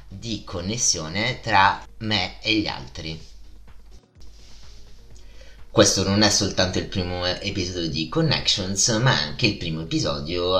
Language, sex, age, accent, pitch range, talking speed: Italian, male, 30-49, native, 80-100 Hz, 120 wpm